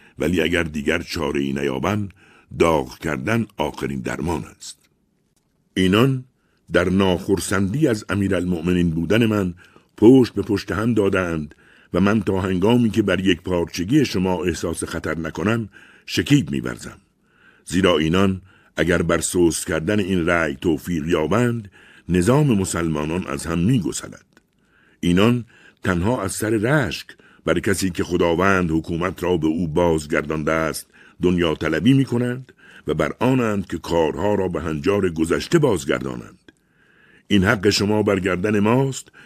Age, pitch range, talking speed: 60-79, 85-110 Hz, 130 wpm